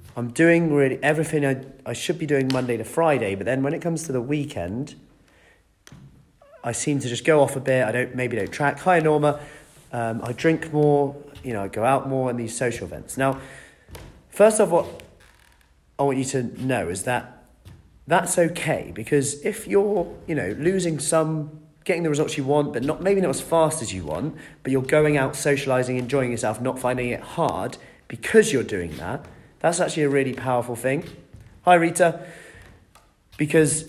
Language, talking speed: English, 190 wpm